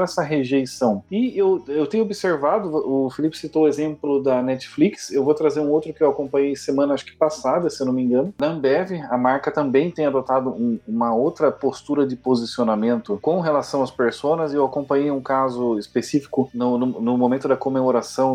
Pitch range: 125-170 Hz